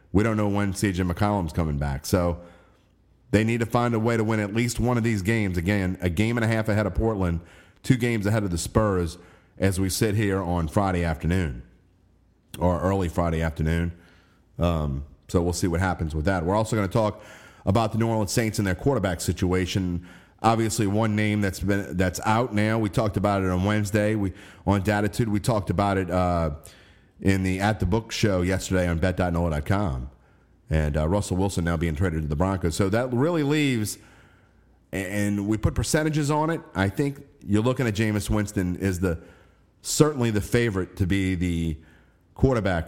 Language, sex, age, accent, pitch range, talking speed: English, male, 40-59, American, 85-105 Hz, 190 wpm